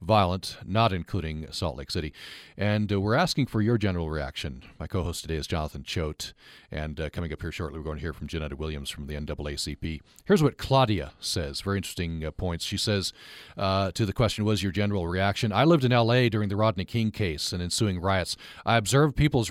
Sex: male